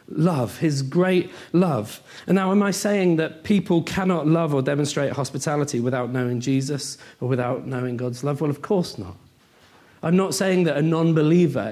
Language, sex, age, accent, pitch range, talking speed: English, male, 40-59, British, 130-180 Hz, 175 wpm